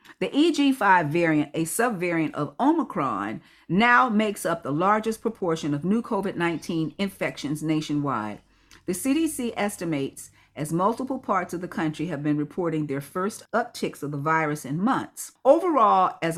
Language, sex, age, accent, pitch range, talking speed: English, female, 50-69, American, 150-200 Hz, 145 wpm